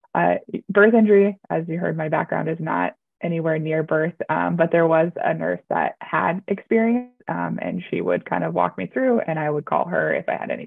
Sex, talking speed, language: female, 225 wpm, English